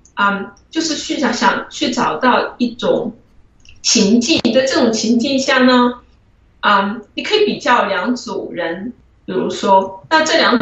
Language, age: Chinese, 20-39